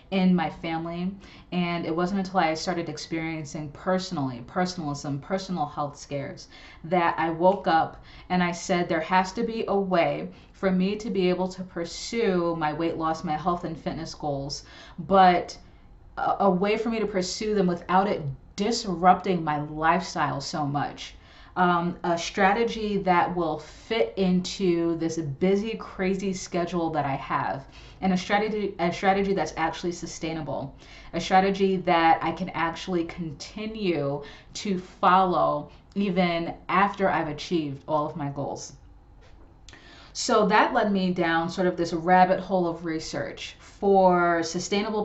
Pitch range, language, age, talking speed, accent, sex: 160-190 Hz, English, 30-49, 150 wpm, American, female